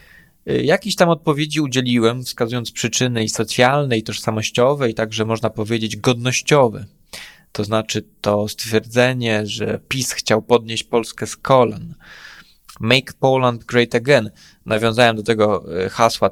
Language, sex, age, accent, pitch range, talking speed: Polish, male, 20-39, native, 110-145 Hz, 125 wpm